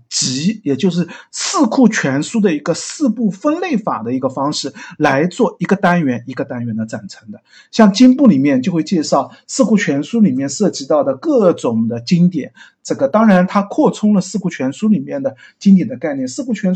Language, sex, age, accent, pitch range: Chinese, male, 50-69, native, 150-240 Hz